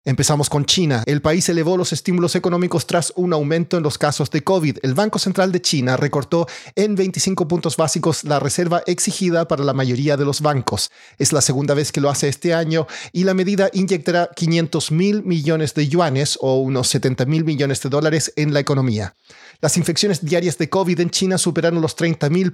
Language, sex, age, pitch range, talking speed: Spanish, male, 40-59, 145-180 Hz, 200 wpm